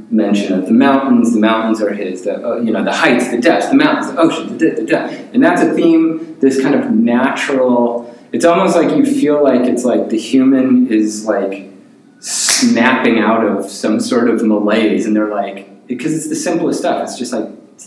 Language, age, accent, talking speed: English, 30-49, American, 205 wpm